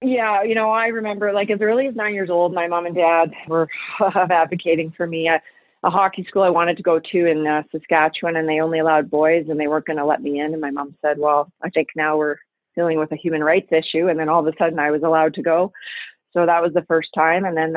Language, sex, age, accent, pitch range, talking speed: English, female, 30-49, American, 155-180 Hz, 270 wpm